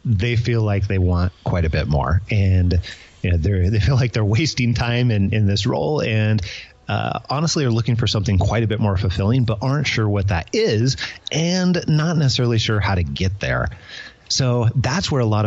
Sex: male